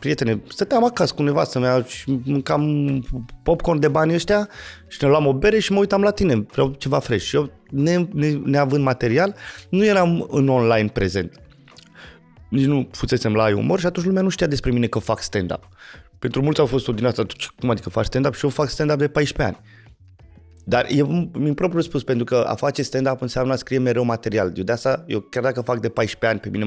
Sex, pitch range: male, 110-145 Hz